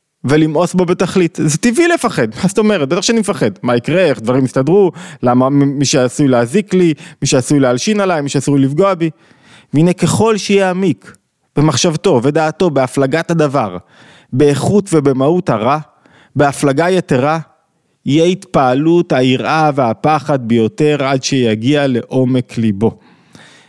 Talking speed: 130 wpm